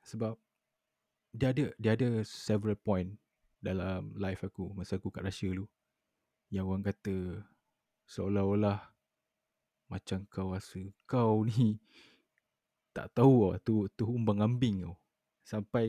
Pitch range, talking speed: 95-110 Hz, 125 wpm